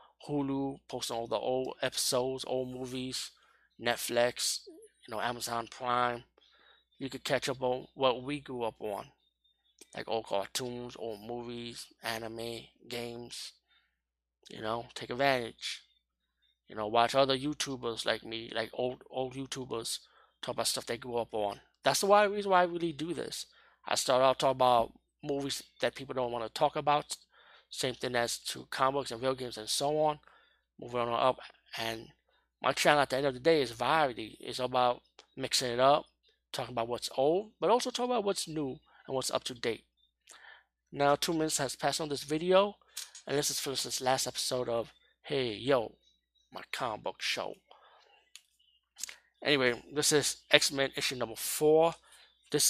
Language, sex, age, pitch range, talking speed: English, male, 20-39, 115-145 Hz, 170 wpm